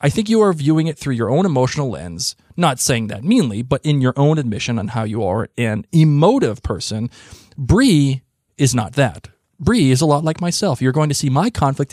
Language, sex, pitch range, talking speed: English, male, 115-155 Hz, 215 wpm